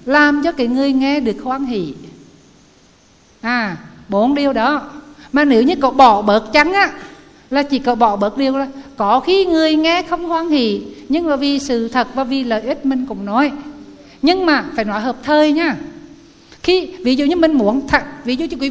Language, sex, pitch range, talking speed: Vietnamese, female, 255-310 Hz, 205 wpm